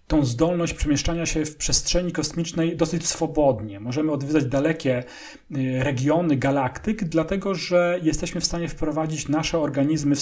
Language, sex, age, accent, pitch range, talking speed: English, male, 30-49, Polish, 130-160 Hz, 135 wpm